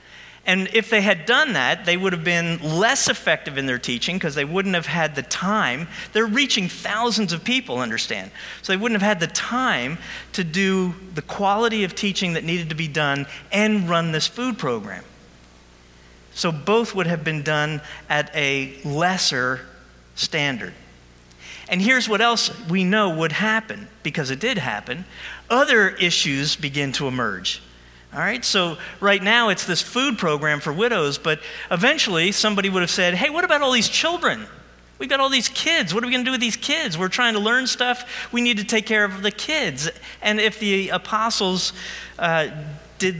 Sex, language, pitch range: male, English, 155-215 Hz